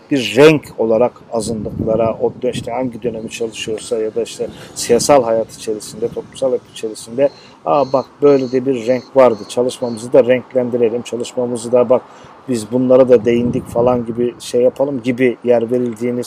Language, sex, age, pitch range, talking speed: Turkish, male, 50-69, 125-145 Hz, 155 wpm